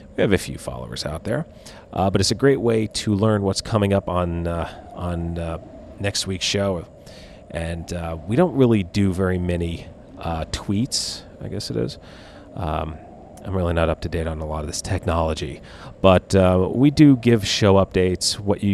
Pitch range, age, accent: 85-100 Hz, 40-59, American